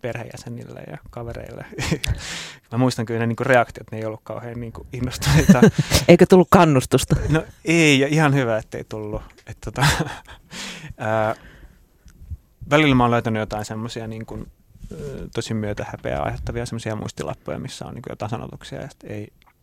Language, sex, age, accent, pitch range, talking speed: Finnish, male, 20-39, native, 100-125 Hz, 140 wpm